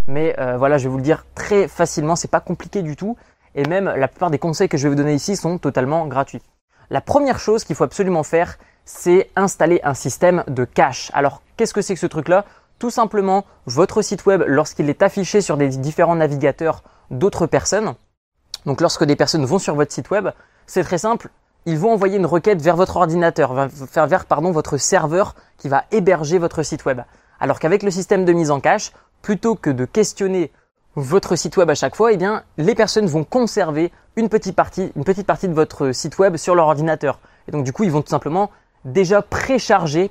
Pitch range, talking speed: 145-195 Hz, 210 wpm